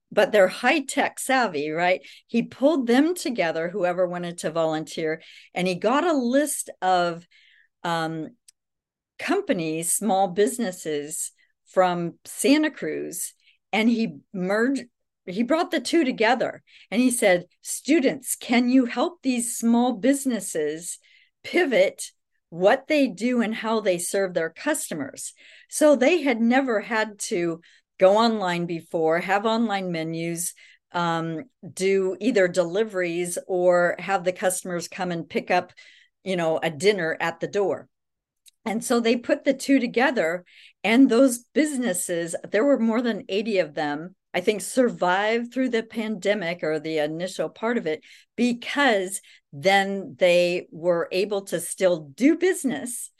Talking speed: 140 wpm